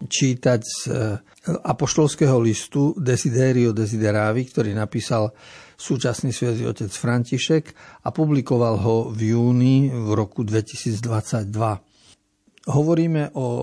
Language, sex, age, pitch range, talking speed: Slovak, male, 50-69, 115-140 Hz, 95 wpm